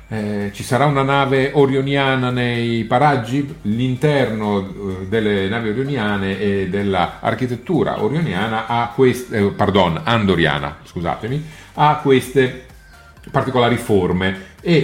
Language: Italian